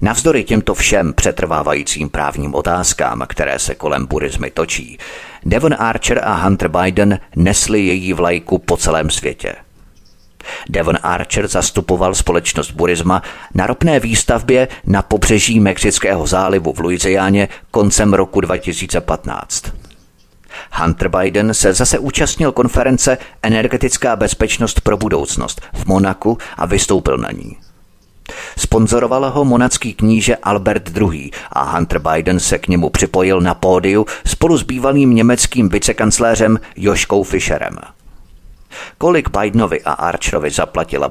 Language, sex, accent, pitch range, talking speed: Czech, male, native, 90-115 Hz, 120 wpm